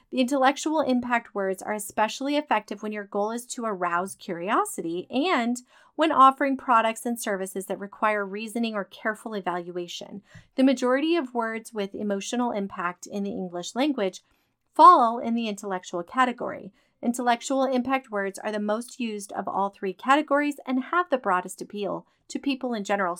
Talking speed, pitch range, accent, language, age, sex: 160 wpm, 200-270 Hz, American, English, 30-49, female